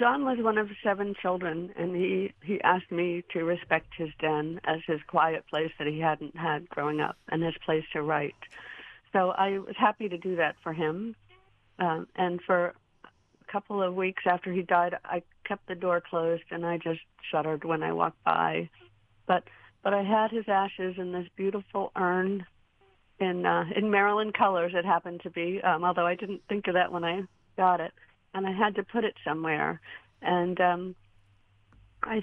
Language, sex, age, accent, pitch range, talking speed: English, female, 50-69, American, 170-195 Hz, 190 wpm